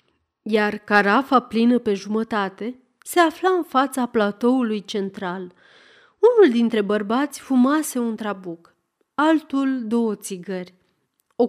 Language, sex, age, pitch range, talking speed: Romanian, female, 30-49, 200-270 Hz, 110 wpm